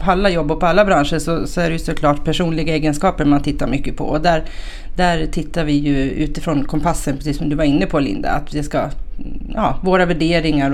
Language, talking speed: Swedish, 195 wpm